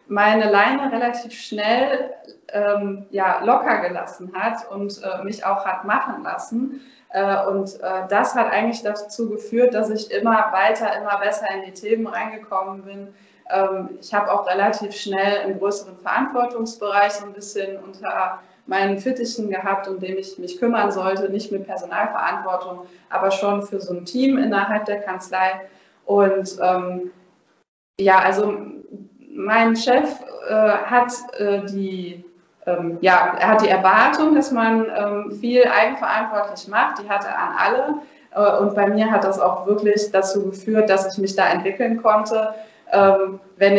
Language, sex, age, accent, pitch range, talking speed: German, female, 20-39, German, 190-220 Hz, 150 wpm